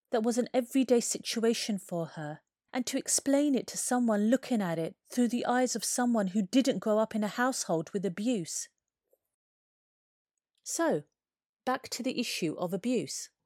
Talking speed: 165 wpm